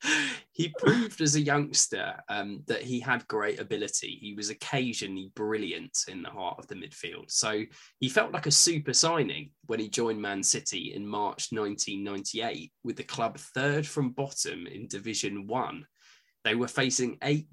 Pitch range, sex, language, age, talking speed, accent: 105-145 Hz, male, English, 10-29, 170 wpm, British